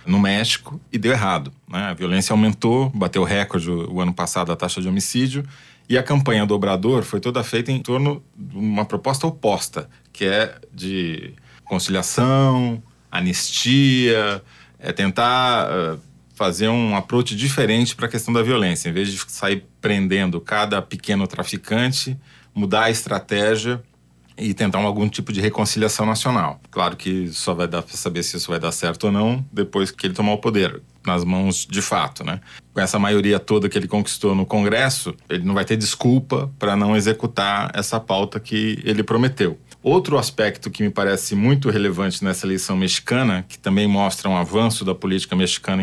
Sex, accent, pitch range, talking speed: male, Brazilian, 95-115 Hz, 170 wpm